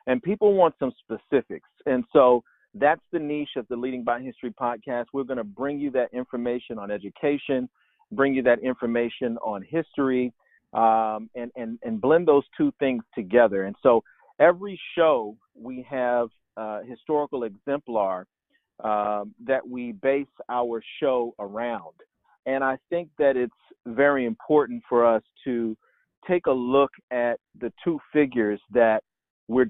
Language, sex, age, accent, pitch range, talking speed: English, male, 40-59, American, 120-145 Hz, 150 wpm